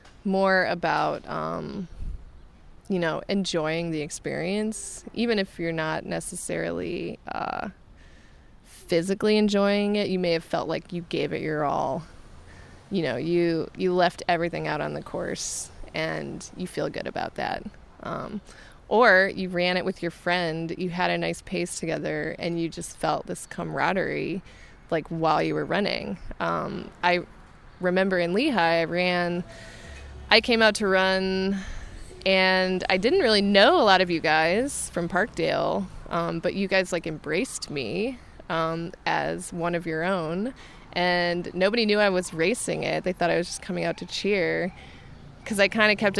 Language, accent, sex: English, American, female